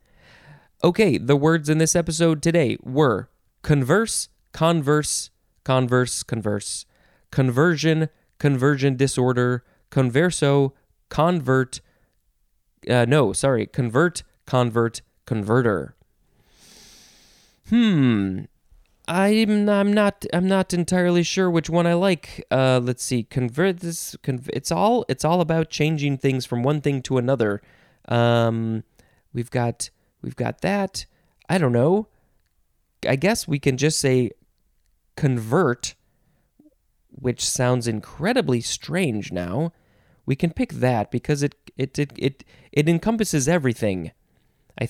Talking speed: 115 wpm